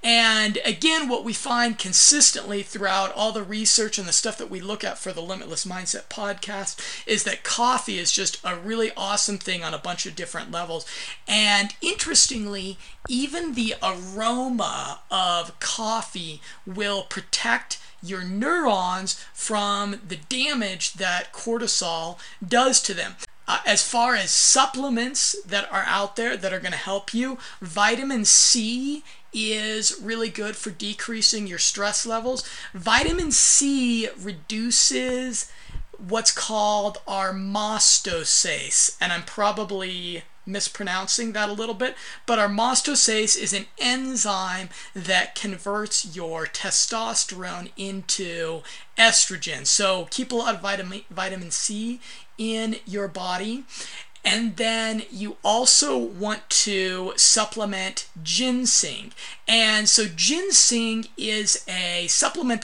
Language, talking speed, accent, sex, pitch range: English, 125 wpm, American, male, 190-230 Hz